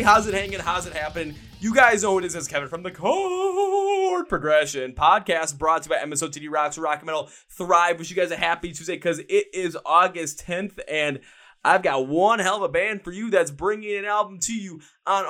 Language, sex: English, male